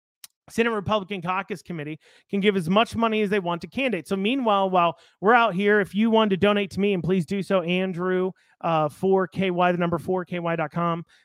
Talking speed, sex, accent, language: 195 wpm, male, American, English